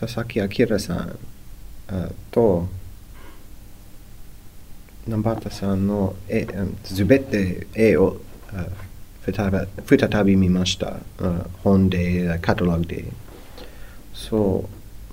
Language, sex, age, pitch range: Japanese, male, 30-49, 95-115 Hz